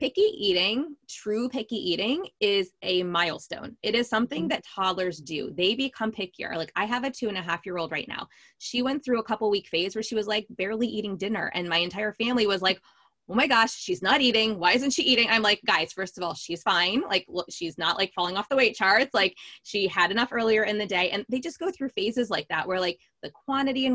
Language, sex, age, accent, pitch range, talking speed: English, female, 20-39, American, 175-235 Hz, 245 wpm